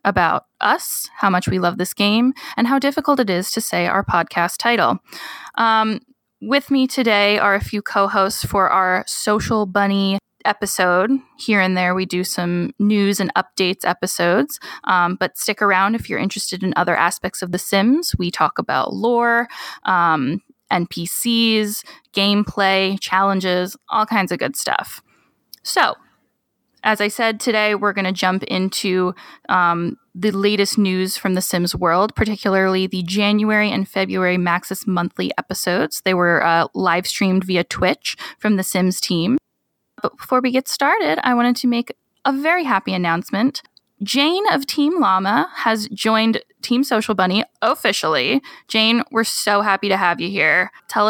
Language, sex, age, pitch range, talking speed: English, female, 10-29, 185-225 Hz, 160 wpm